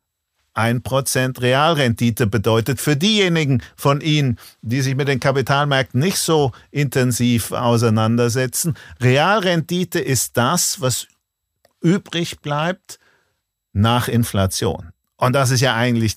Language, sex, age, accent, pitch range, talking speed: German, male, 50-69, German, 105-155 Hz, 105 wpm